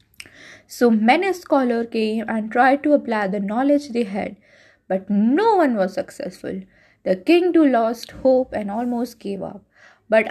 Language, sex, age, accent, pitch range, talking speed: Hindi, female, 20-39, native, 215-290 Hz, 155 wpm